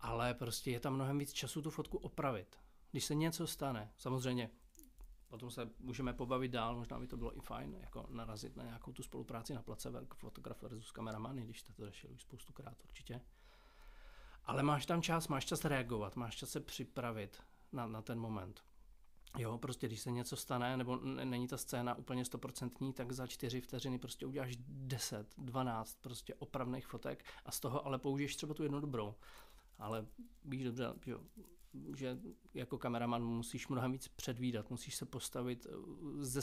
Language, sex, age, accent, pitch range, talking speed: Czech, male, 40-59, native, 120-145 Hz, 180 wpm